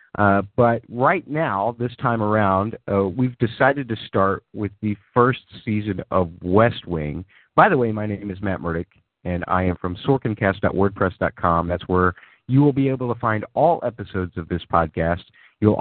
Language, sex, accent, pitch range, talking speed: English, male, American, 95-120 Hz, 175 wpm